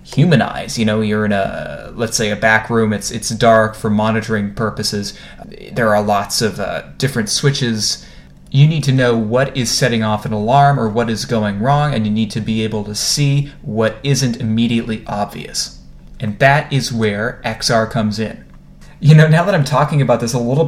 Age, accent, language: 20-39, American, English